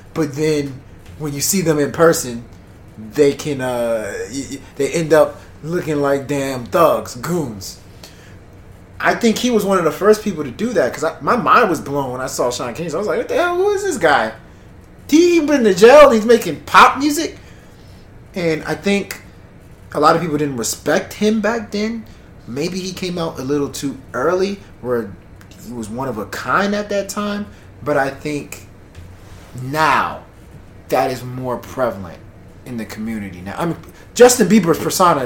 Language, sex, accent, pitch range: English, male, American, 120-185 Hz